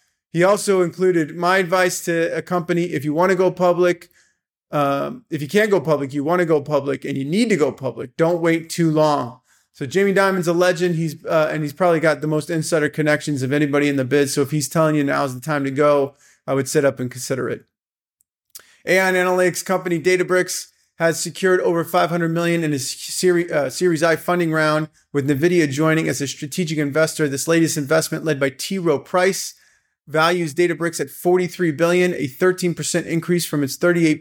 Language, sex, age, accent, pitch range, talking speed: English, male, 30-49, American, 145-175 Hz, 205 wpm